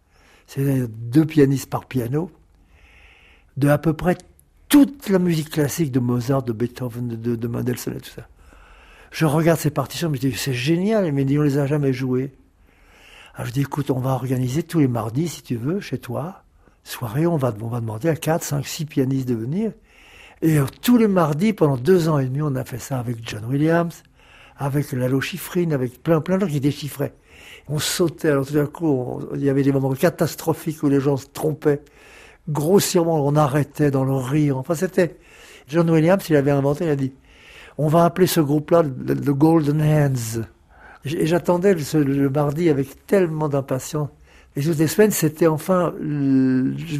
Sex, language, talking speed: male, French, 190 wpm